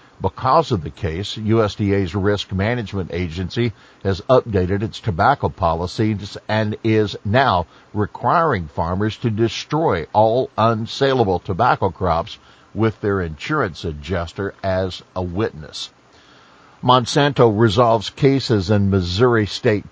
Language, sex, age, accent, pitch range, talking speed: English, male, 60-79, American, 95-115 Hz, 110 wpm